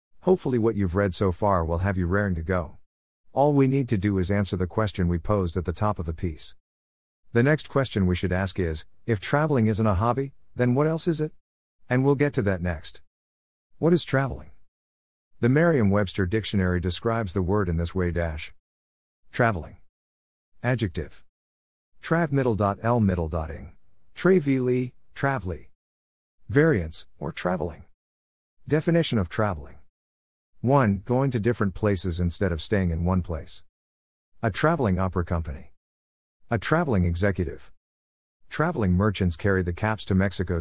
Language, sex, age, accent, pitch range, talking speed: English, male, 50-69, American, 80-115 Hz, 145 wpm